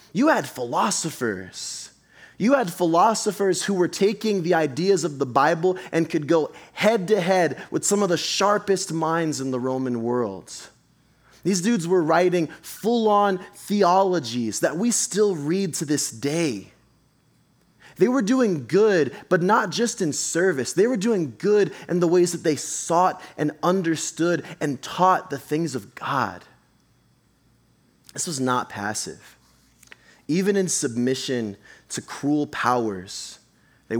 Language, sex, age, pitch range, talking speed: English, male, 20-39, 115-180 Hz, 145 wpm